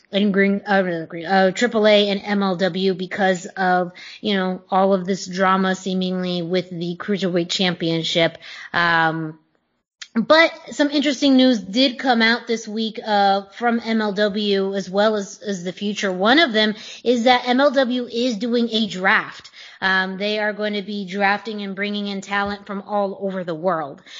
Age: 20-39